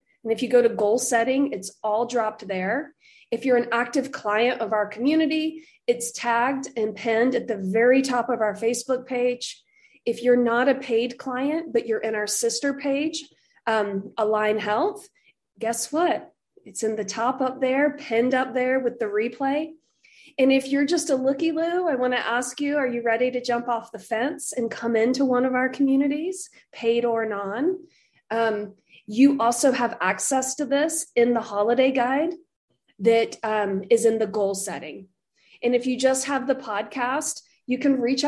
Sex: female